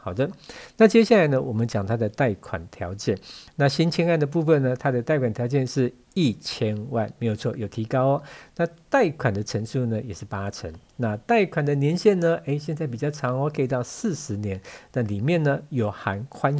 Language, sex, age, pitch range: Chinese, male, 50-69, 110-150 Hz